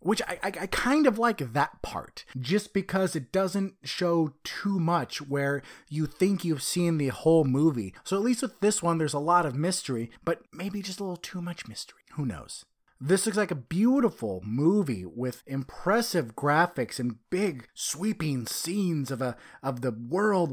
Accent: American